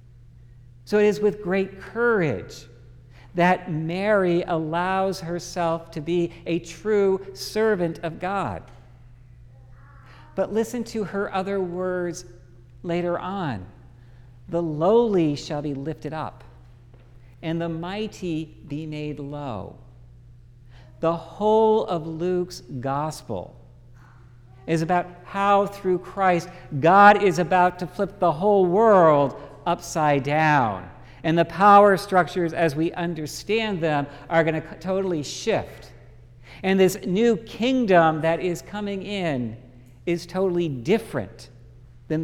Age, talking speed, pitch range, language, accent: 50-69, 115 wpm, 125-180 Hz, English, American